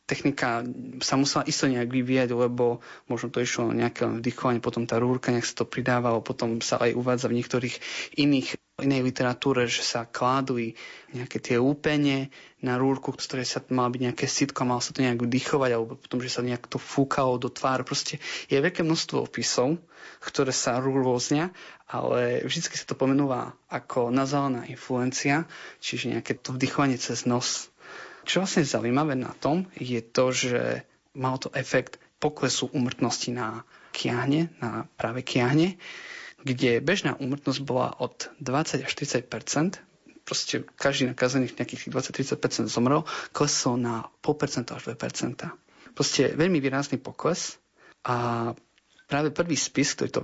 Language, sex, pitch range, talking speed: Slovak, male, 120-145 Hz, 155 wpm